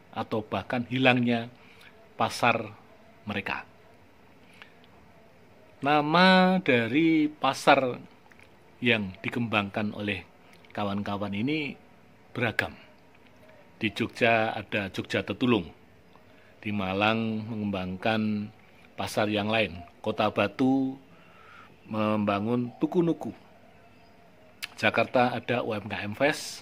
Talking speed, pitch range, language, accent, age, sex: 75 wpm, 105-135 Hz, Indonesian, native, 40-59, male